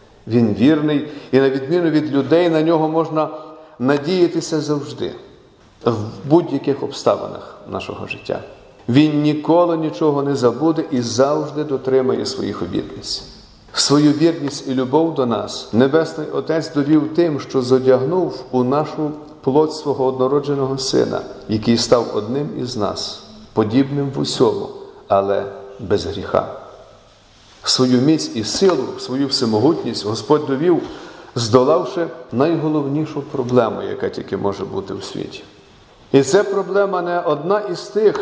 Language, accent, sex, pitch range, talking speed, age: Ukrainian, native, male, 125-160 Hz, 130 wpm, 40-59